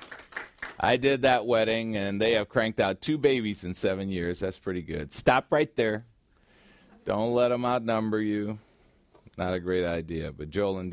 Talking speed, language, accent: 175 wpm, English, American